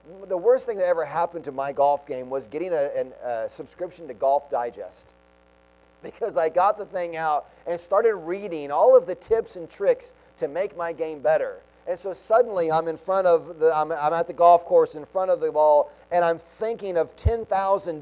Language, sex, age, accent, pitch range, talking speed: English, male, 30-49, American, 140-200 Hz, 210 wpm